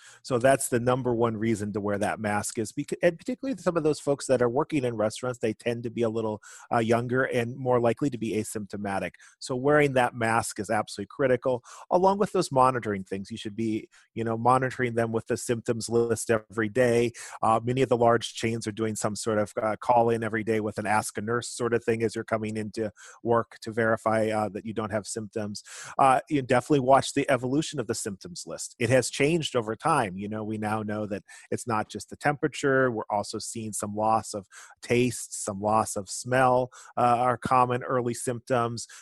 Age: 30-49